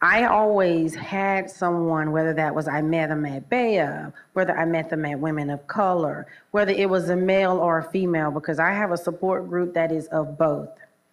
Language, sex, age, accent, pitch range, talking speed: English, female, 30-49, American, 165-200 Hz, 205 wpm